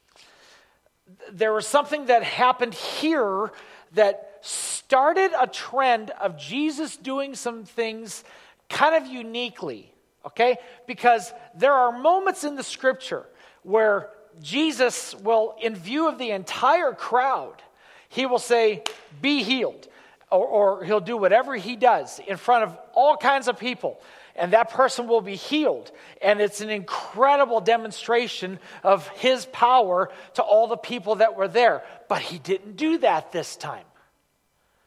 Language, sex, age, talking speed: English, male, 40-59, 140 wpm